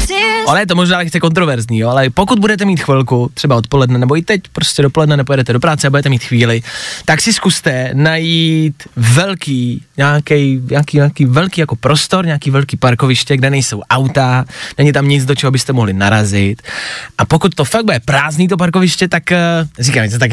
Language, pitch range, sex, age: Czech, 135-170 Hz, male, 20-39